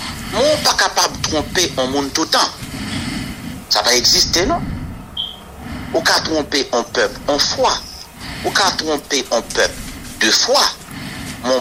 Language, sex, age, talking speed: English, male, 60-79, 145 wpm